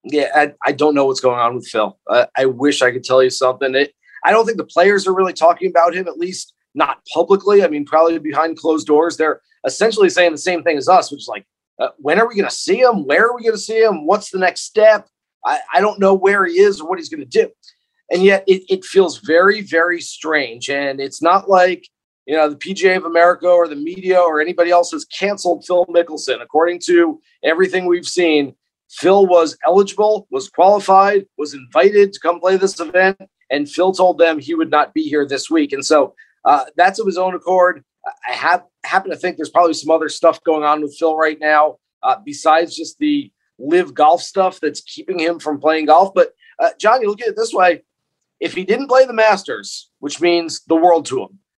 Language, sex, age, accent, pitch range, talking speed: English, male, 40-59, American, 155-210 Hz, 225 wpm